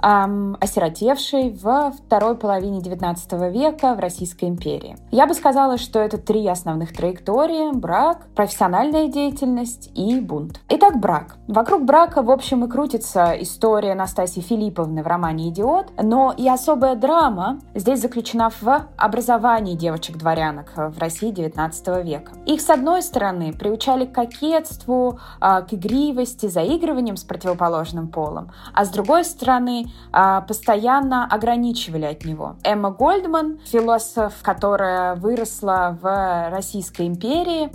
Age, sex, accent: 20-39, female, native